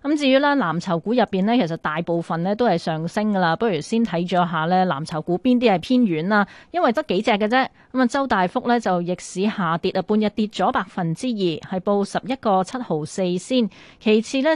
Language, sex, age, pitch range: Chinese, female, 20-39, 175-240 Hz